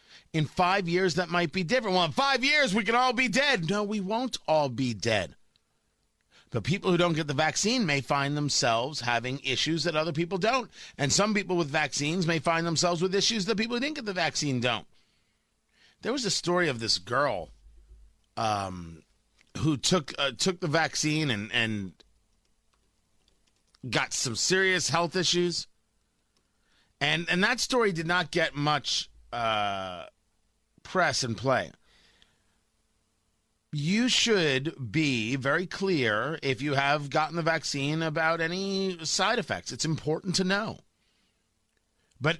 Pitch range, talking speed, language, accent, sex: 130-180 Hz, 155 wpm, English, American, male